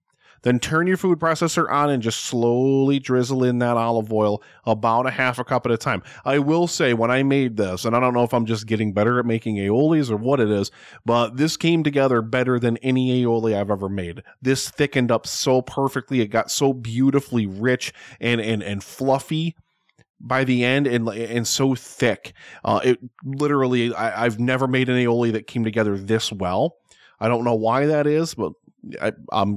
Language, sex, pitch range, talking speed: English, male, 115-140 Hz, 200 wpm